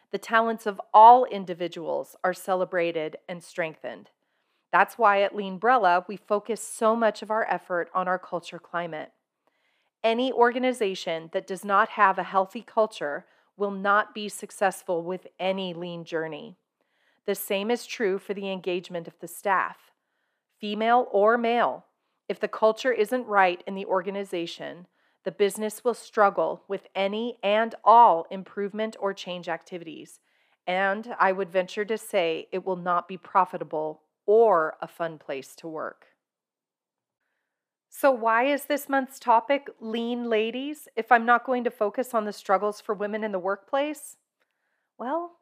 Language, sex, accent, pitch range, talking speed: English, female, American, 185-235 Hz, 150 wpm